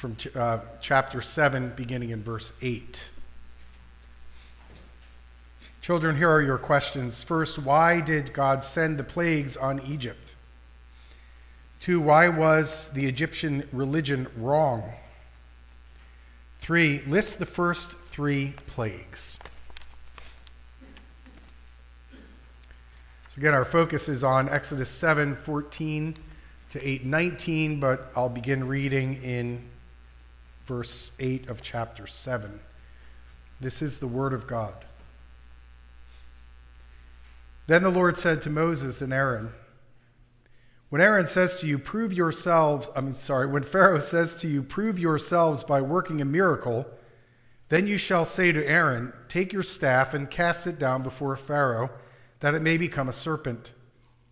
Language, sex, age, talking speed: English, male, 40-59, 125 wpm